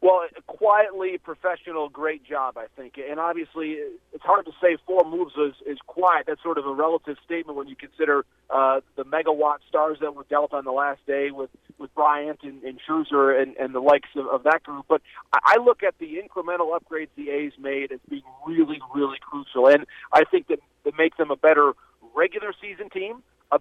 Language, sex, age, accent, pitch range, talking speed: English, male, 40-59, American, 145-180 Hz, 205 wpm